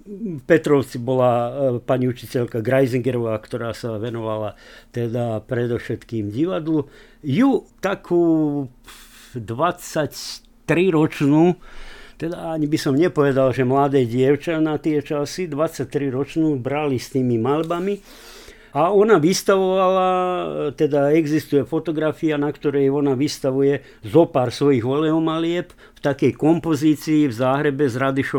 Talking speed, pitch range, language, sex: 100 wpm, 130-160 Hz, Slovak, male